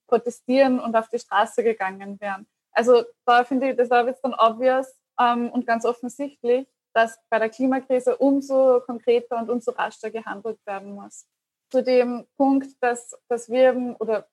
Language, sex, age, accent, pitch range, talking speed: German, female, 20-39, German, 220-245 Hz, 155 wpm